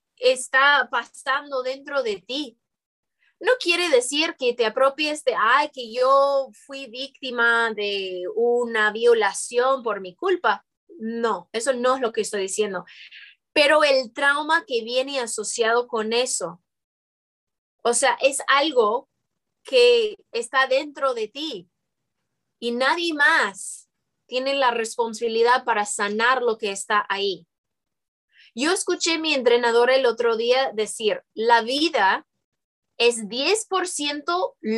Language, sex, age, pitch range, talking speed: Spanish, female, 20-39, 225-305 Hz, 125 wpm